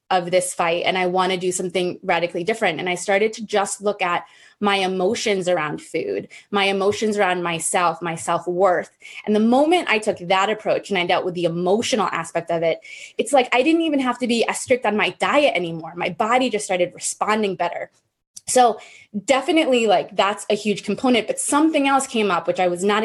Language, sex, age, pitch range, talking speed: English, female, 20-39, 185-245 Hz, 210 wpm